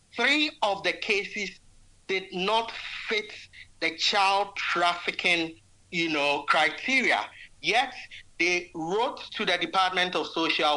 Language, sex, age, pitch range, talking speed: English, male, 60-79, 150-200 Hz, 115 wpm